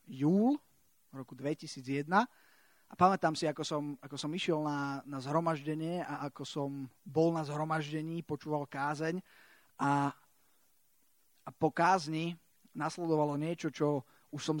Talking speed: 125 wpm